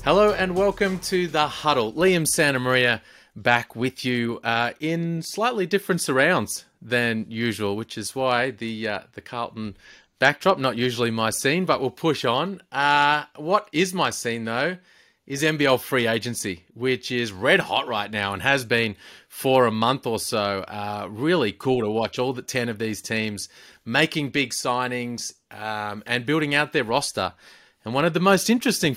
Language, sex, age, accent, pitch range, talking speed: English, male, 30-49, Australian, 115-155 Hz, 175 wpm